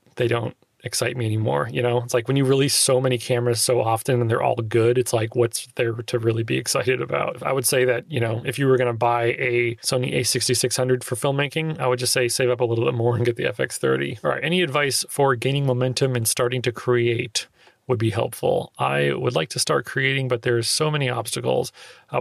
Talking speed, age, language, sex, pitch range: 235 wpm, 30-49, English, male, 120-135 Hz